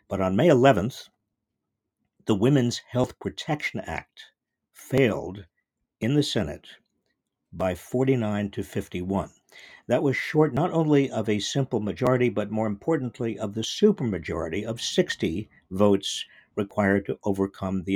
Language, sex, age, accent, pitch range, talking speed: English, male, 60-79, American, 100-135 Hz, 130 wpm